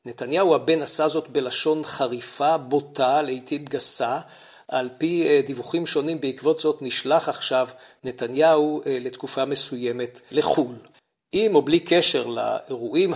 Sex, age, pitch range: male, 50-69, 130-165 Hz